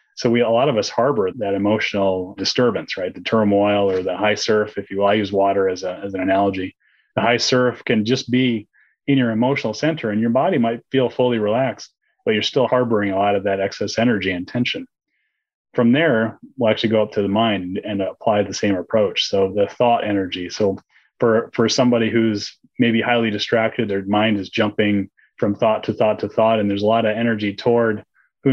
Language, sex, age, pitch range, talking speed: English, male, 30-49, 100-120 Hz, 210 wpm